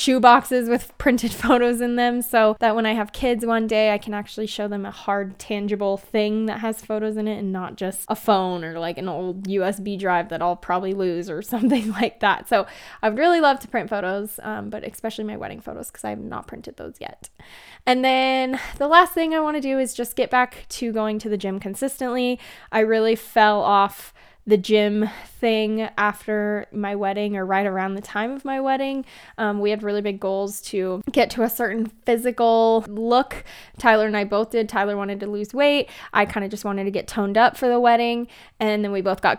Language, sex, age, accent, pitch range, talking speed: English, female, 10-29, American, 200-245 Hz, 220 wpm